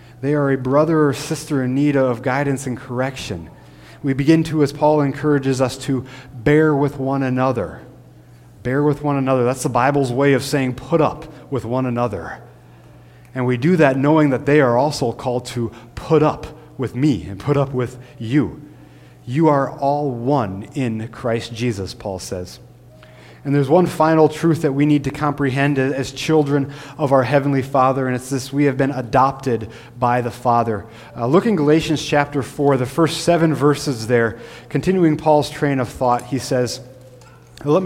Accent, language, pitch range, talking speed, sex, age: American, English, 120-145 Hz, 180 wpm, male, 30-49